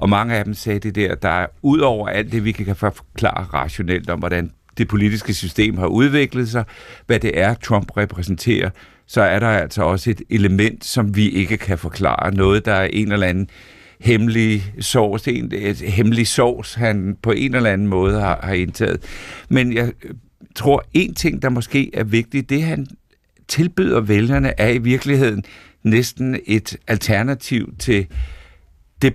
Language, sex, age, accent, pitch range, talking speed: Danish, male, 60-79, native, 100-120 Hz, 170 wpm